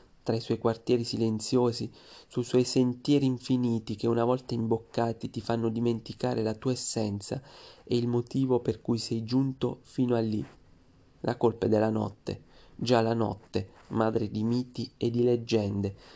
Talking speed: 160 wpm